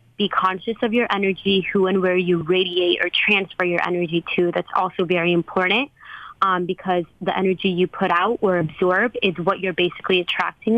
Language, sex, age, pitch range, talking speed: English, female, 20-39, 180-205 Hz, 185 wpm